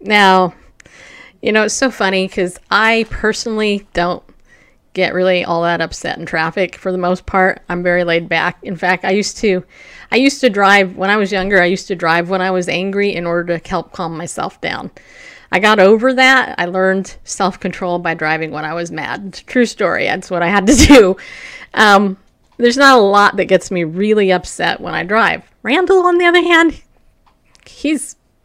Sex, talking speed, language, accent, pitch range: female, 200 wpm, English, American, 180-245 Hz